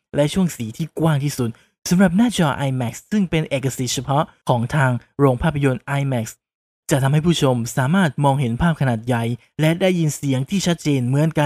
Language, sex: Thai, male